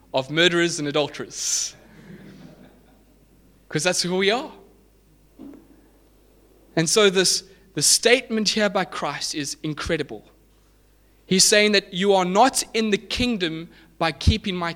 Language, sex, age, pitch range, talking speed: English, male, 20-39, 150-195 Hz, 125 wpm